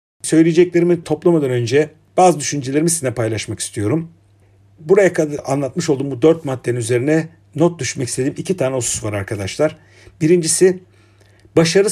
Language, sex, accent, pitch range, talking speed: Turkish, male, native, 115-160 Hz, 130 wpm